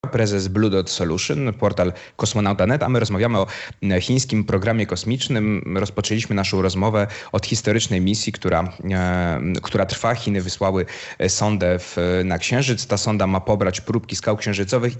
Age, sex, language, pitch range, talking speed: 20-39, male, Polish, 100-115 Hz, 135 wpm